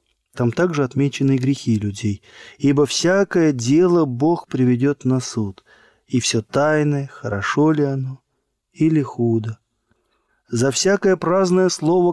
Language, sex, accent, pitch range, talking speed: Russian, male, native, 125-165 Hz, 120 wpm